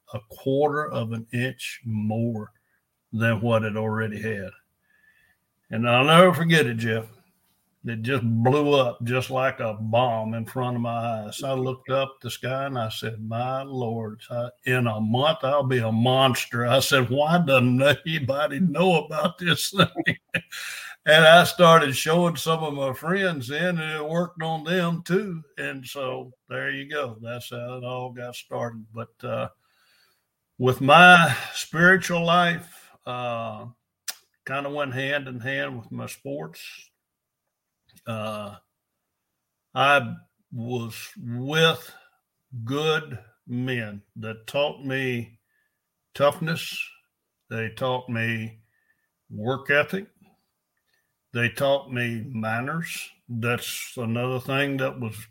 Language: English